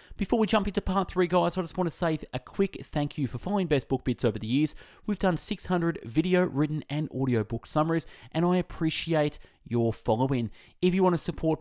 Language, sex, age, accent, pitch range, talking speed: English, male, 20-39, Australian, 120-170 Hz, 220 wpm